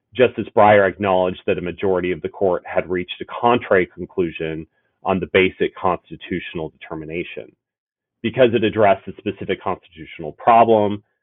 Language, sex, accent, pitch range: English, male, American, 85-110 Hz